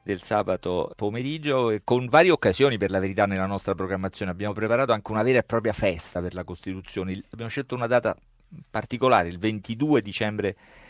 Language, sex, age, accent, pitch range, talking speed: Italian, male, 40-59, native, 90-115 Hz, 180 wpm